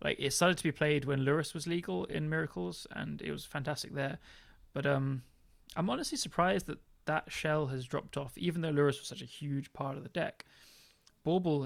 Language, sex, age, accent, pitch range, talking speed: English, male, 20-39, British, 140-160 Hz, 205 wpm